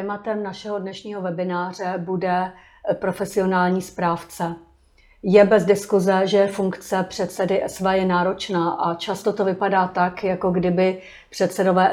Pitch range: 180-195 Hz